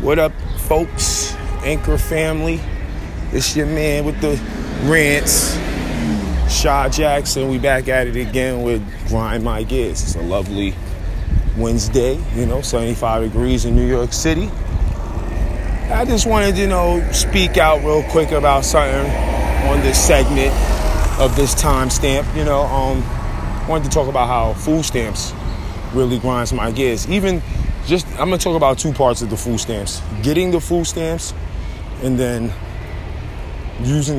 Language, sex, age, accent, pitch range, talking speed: English, male, 20-39, American, 90-140 Hz, 145 wpm